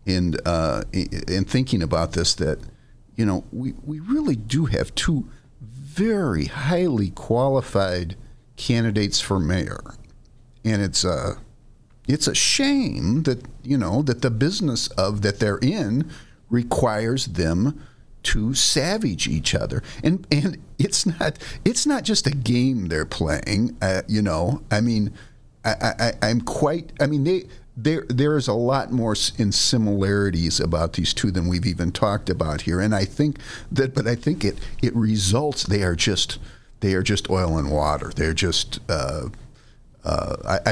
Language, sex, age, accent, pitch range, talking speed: English, male, 50-69, American, 90-125 Hz, 160 wpm